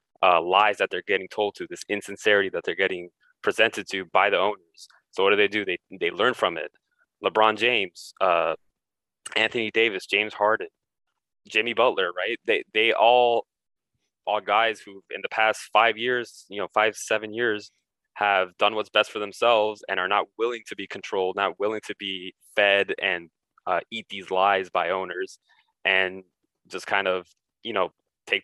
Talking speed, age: 180 wpm, 20-39